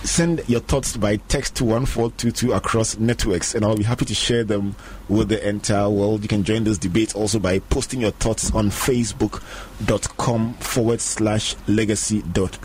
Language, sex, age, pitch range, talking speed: English, male, 30-49, 100-120 Hz, 170 wpm